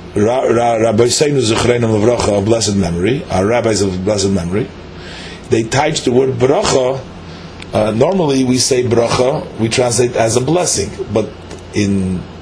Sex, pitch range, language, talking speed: male, 90-130 Hz, English, 125 wpm